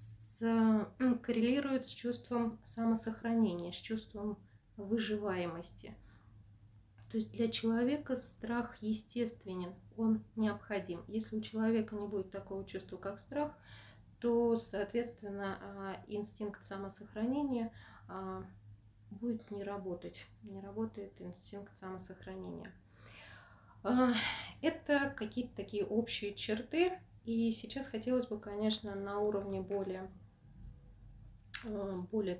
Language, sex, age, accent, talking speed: Russian, female, 20-39, native, 90 wpm